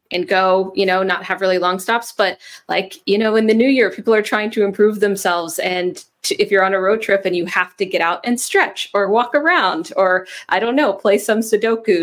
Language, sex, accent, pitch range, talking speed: English, female, American, 185-265 Hz, 240 wpm